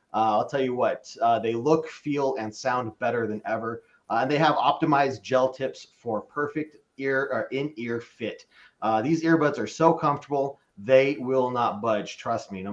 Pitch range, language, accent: 115-150 Hz, English, American